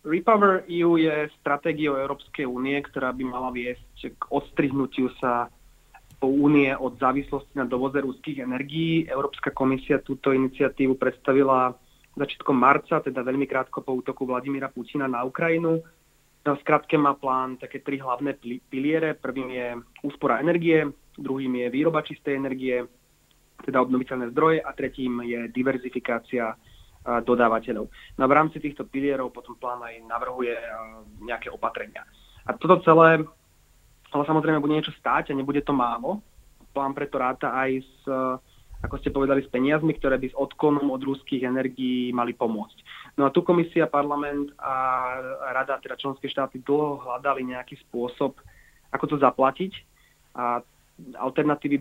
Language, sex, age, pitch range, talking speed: Slovak, male, 30-49, 125-145 Hz, 140 wpm